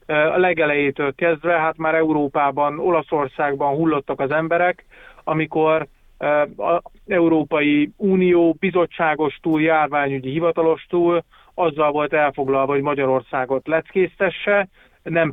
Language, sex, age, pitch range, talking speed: Hungarian, male, 30-49, 140-165 Hz, 100 wpm